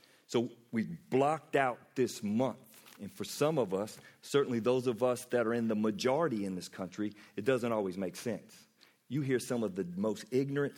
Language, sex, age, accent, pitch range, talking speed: English, male, 40-59, American, 100-135 Hz, 195 wpm